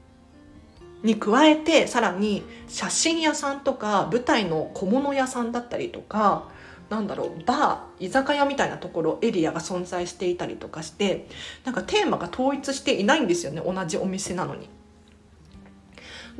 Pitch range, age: 175-275 Hz, 40-59